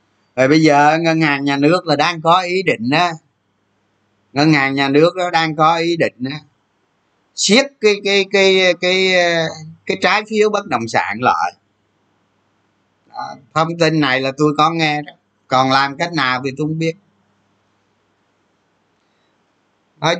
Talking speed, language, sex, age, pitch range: 155 wpm, Vietnamese, male, 20-39, 110-170 Hz